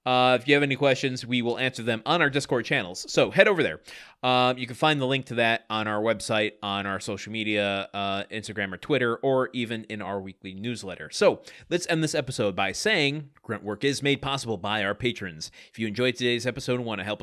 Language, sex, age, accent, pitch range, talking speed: English, male, 30-49, American, 105-145 Hz, 230 wpm